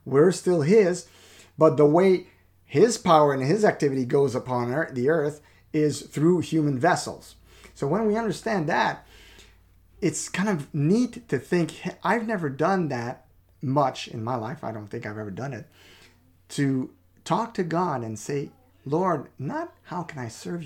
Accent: American